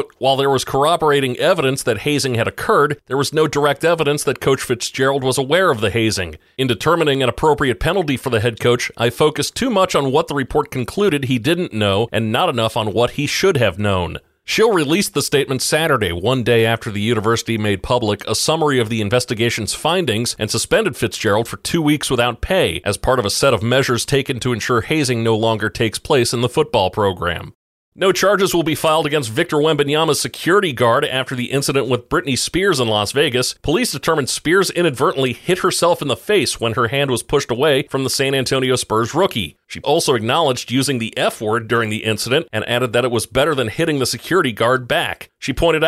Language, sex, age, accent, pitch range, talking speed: English, male, 40-59, American, 115-145 Hz, 210 wpm